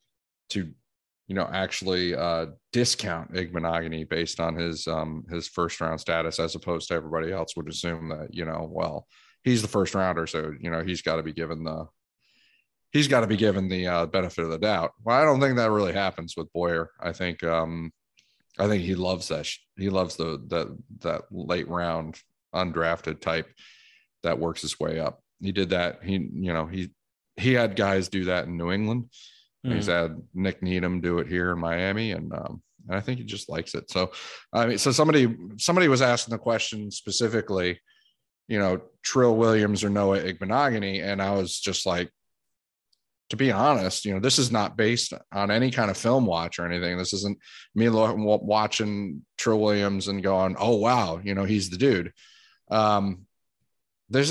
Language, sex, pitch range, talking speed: English, male, 85-110 Hz, 185 wpm